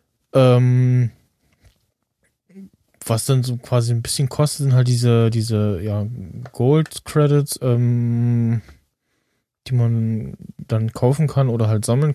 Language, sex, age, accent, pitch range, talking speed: German, male, 20-39, German, 115-130 Hz, 100 wpm